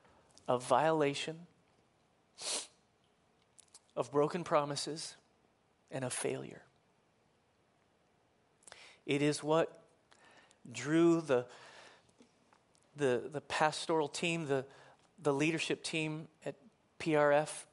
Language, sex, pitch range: English, male, 130-160 Hz